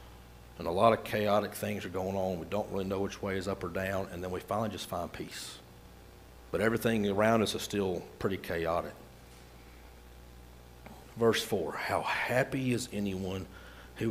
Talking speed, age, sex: 175 wpm, 50-69, male